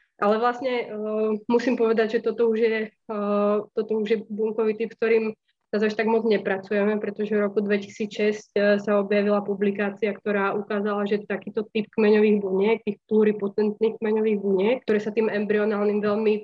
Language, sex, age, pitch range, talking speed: Slovak, female, 20-39, 200-215 Hz, 170 wpm